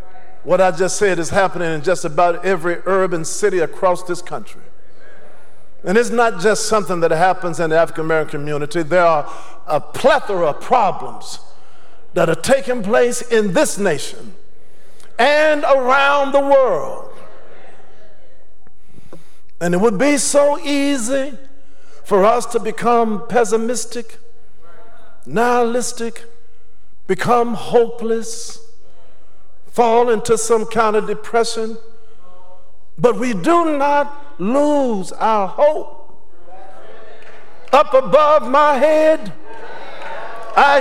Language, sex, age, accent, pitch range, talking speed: English, male, 50-69, American, 210-290 Hz, 110 wpm